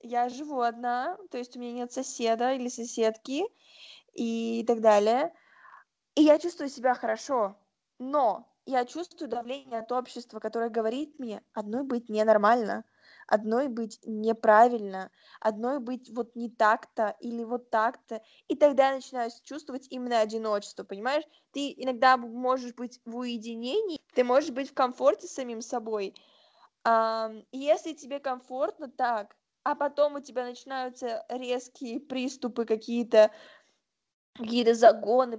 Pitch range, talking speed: 230-275 Hz, 130 wpm